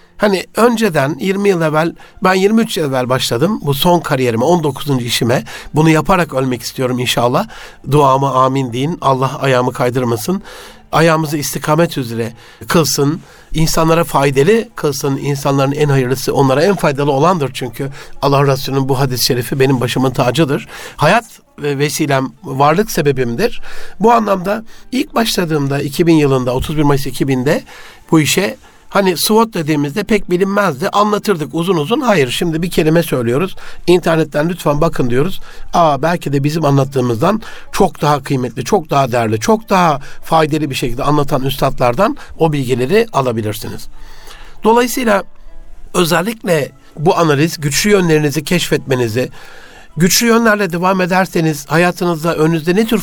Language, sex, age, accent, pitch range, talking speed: Turkish, male, 60-79, native, 135-185 Hz, 130 wpm